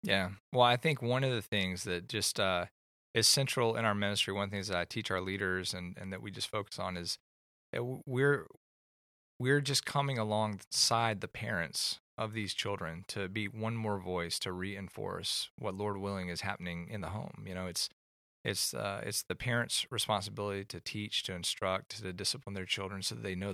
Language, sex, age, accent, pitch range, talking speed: English, male, 20-39, American, 90-110 Hz, 200 wpm